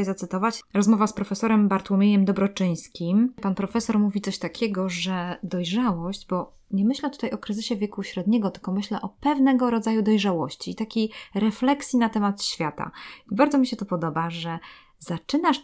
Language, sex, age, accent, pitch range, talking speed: Polish, female, 20-39, native, 175-220 Hz, 155 wpm